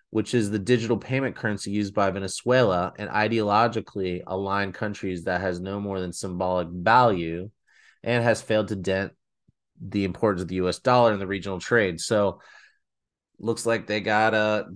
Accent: American